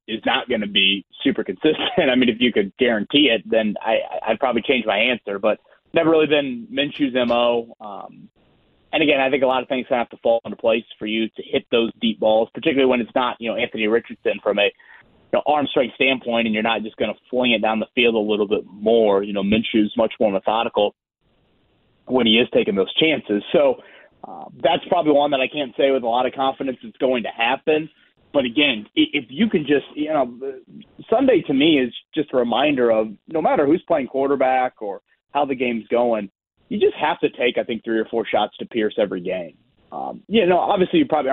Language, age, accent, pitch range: English, 30-49, American, 110-145 Hz